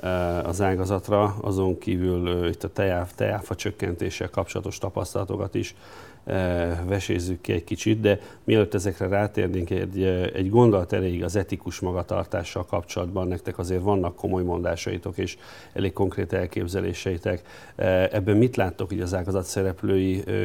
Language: Hungarian